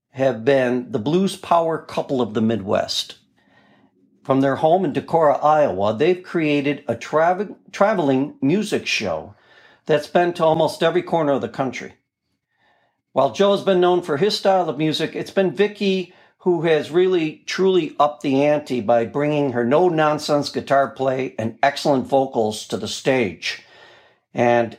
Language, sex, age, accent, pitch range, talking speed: English, male, 60-79, American, 125-165 Hz, 150 wpm